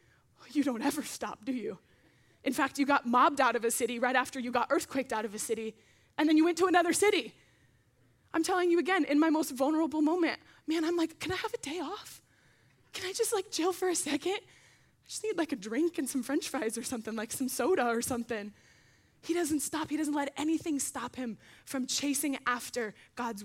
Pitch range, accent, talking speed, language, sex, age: 215-285 Hz, American, 225 wpm, English, female, 10-29